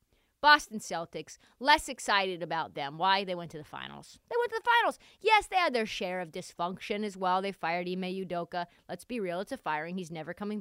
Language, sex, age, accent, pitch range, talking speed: English, female, 30-49, American, 180-260 Hz, 220 wpm